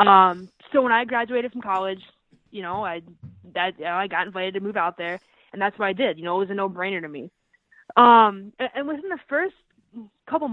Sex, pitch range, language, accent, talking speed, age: female, 185-235 Hz, English, American, 235 wpm, 20-39